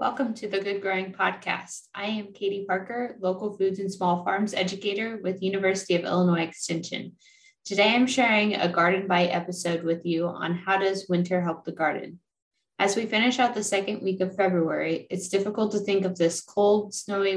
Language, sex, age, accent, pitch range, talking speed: English, female, 20-39, American, 175-200 Hz, 185 wpm